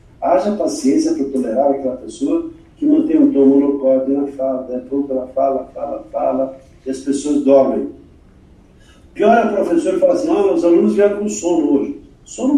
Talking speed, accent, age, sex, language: 175 wpm, Brazilian, 60-79, male, Portuguese